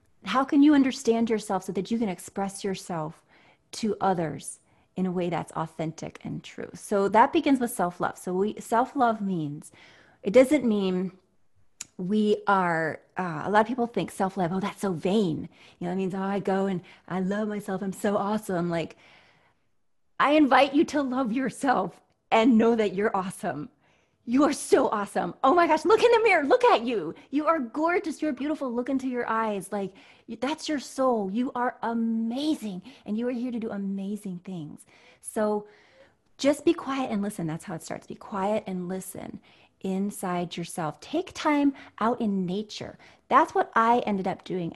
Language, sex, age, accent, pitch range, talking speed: English, female, 30-49, American, 185-255 Hz, 180 wpm